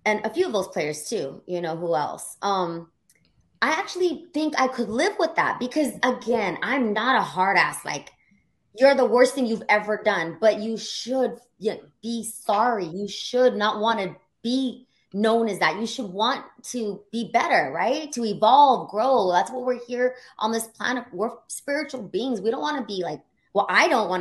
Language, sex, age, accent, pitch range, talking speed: English, female, 20-39, American, 195-250 Hz, 195 wpm